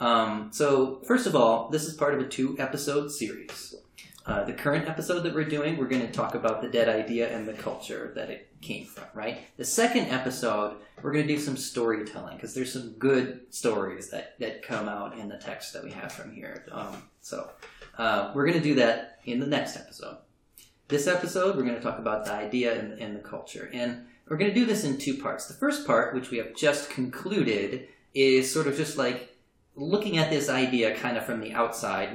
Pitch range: 115-145 Hz